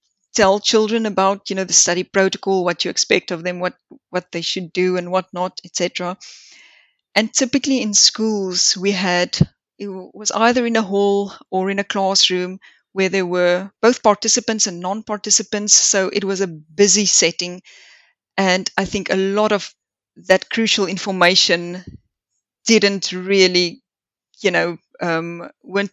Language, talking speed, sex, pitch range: English, 150 wpm, female, 180-210 Hz